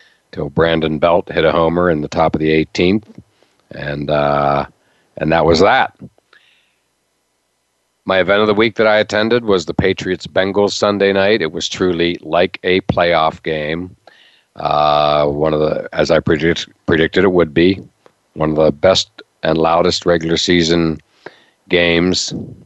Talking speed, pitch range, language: 155 wpm, 80-95 Hz, English